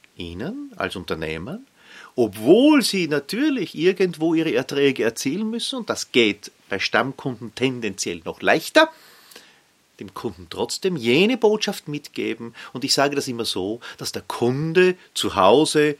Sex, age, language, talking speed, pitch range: male, 40-59, German, 135 wpm, 115-190 Hz